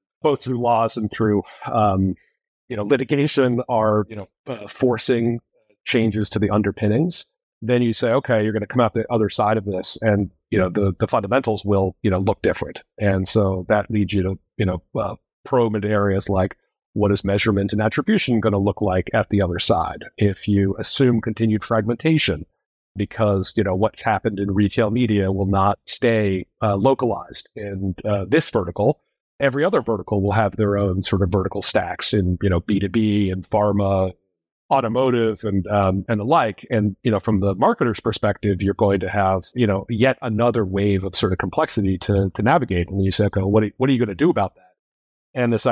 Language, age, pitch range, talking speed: English, 40-59, 100-115 Hz, 200 wpm